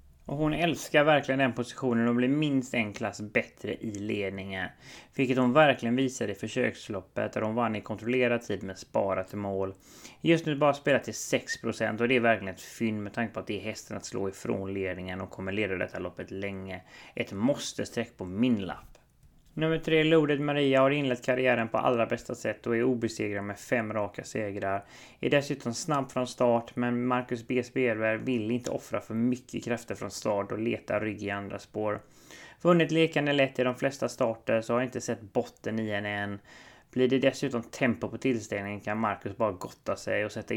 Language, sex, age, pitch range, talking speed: English, male, 30-49, 100-125 Hz, 195 wpm